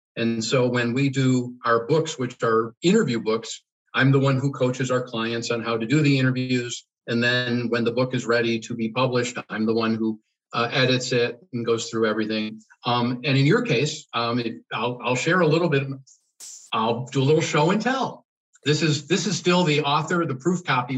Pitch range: 125-155 Hz